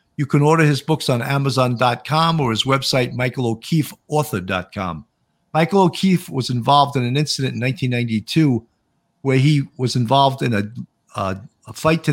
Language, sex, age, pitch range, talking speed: English, male, 50-69, 120-160 Hz, 150 wpm